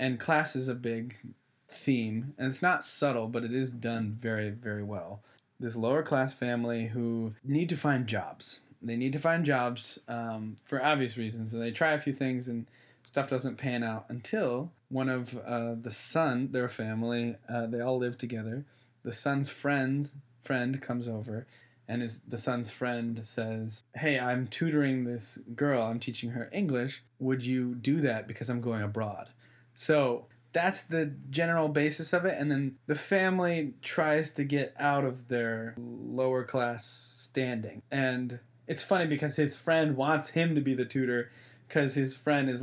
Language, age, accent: English, 20-39, American